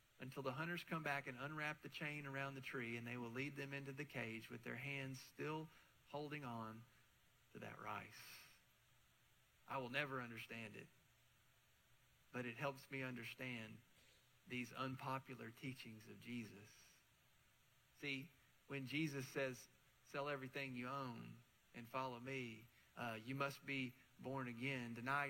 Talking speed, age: 145 wpm, 40-59